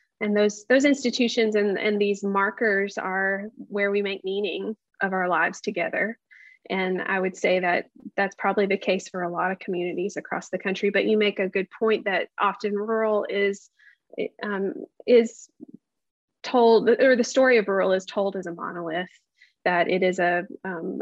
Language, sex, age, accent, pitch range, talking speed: English, female, 30-49, American, 185-220 Hz, 175 wpm